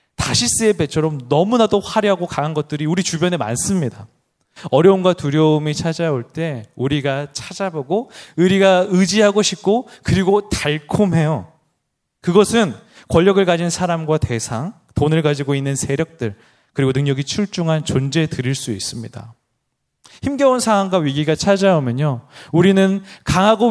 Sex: male